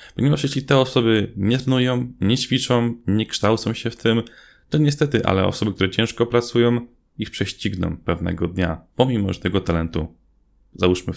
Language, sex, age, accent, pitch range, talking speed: Polish, male, 20-39, native, 95-125 Hz, 155 wpm